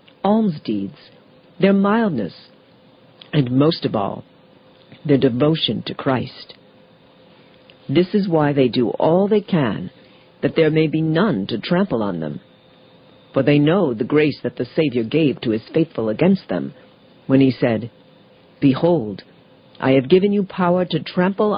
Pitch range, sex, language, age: 130-185 Hz, female, English, 50-69